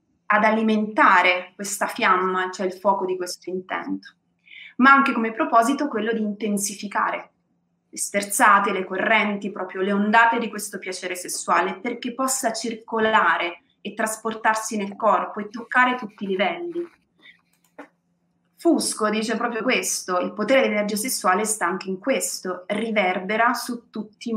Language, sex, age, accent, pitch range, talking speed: Italian, female, 30-49, native, 190-240 Hz, 140 wpm